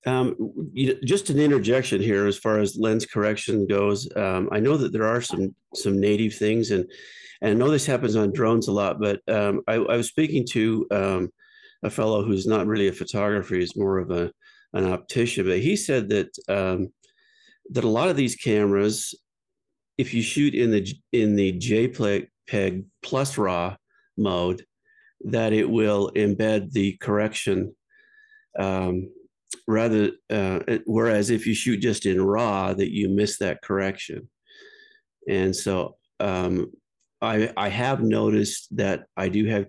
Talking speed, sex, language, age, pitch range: 160 wpm, male, English, 50-69, 100-125 Hz